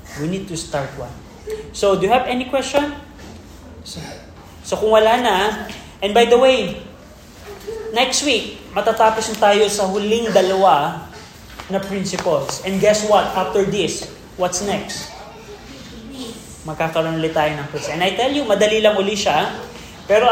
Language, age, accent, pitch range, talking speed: Filipino, 20-39, native, 170-225 Hz, 150 wpm